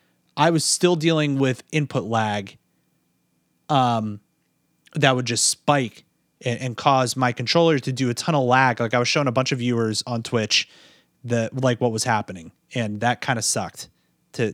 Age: 30-49